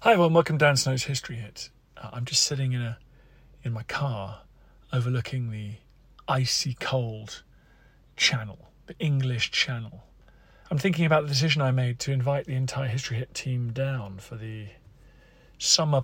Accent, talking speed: British, 155 wpm